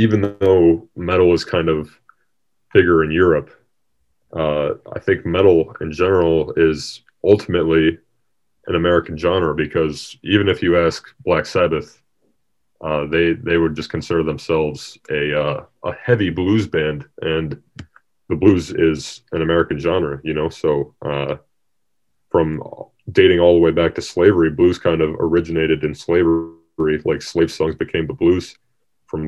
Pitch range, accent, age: 75-85 Hz, American, 30-49